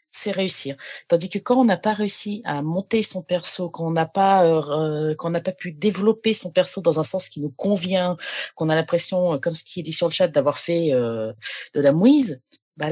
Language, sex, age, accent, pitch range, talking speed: French, female, 30-49, French, 150-200 Hz, 225 wpm